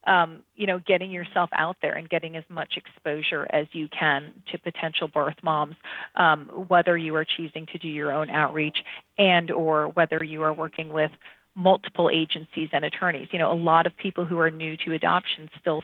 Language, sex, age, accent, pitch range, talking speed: English, female, 30-49, American, 155-180 Hz, 195 wpm